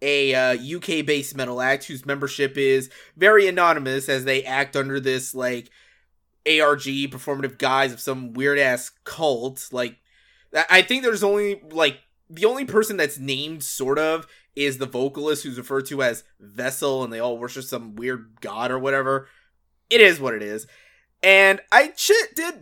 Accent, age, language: American, 20-39, English